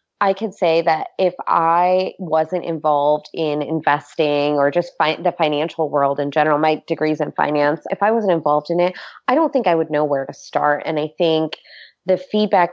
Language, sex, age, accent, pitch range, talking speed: English, female, 20-39, American, 150-185 Hz, 195 wpm